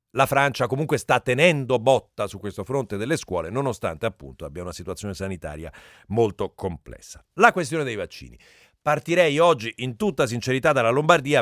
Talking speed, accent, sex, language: 160 wpm, native, male, Italian